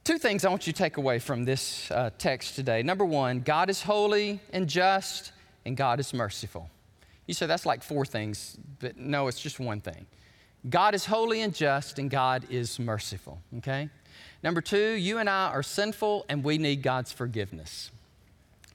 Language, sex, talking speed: English, male, 185 wpm